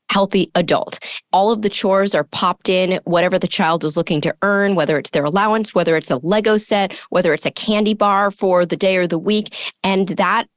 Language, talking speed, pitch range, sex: English, 215 wpm, 170-215 Hz, female